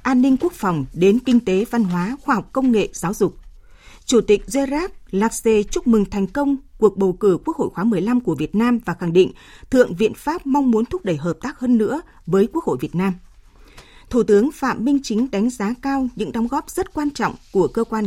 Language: Vietnamese